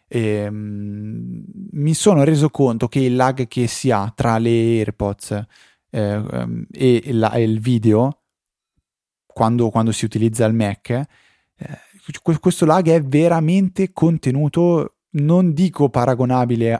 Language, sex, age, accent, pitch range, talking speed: Italian, male, 20-39, native, 105-130 Hz, 115 wpm